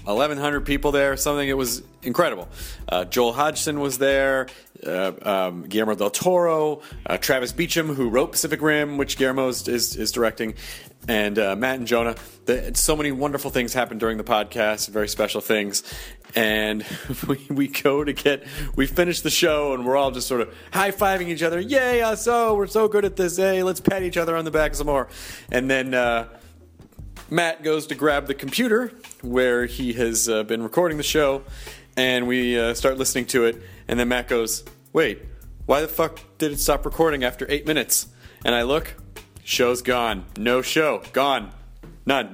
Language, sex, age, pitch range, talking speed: English, male, 30-49, 115-150 Hz, 185 wpm